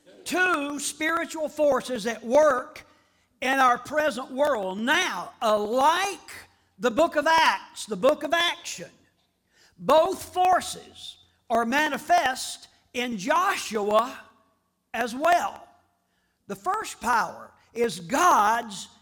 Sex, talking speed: male, 100 wpm